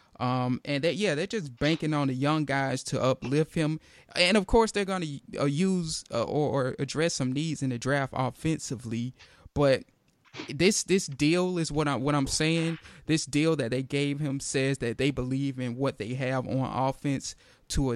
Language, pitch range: English, 130-160 Hz